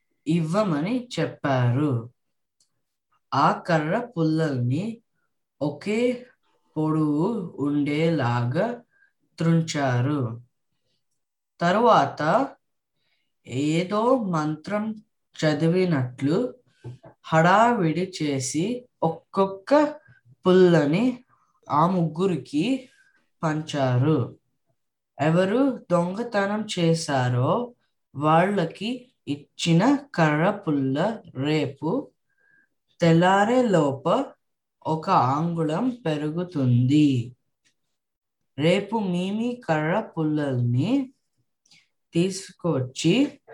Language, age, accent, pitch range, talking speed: Telugu, 20-39, native, 140-205 Hz, 50 wpm